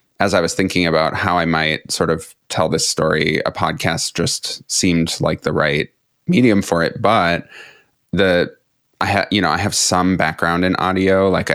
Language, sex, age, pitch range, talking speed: English, male, 20-39, 85-100 Hz, 185 wpm